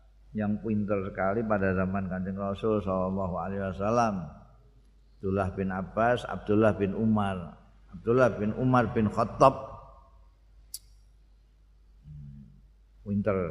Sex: male